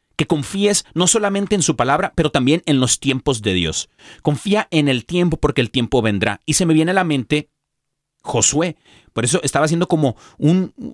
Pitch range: 130-175 Hz